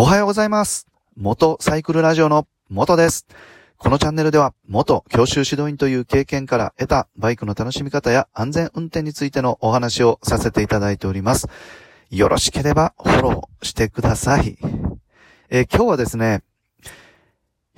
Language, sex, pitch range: Japanese, male, 100-135 Hz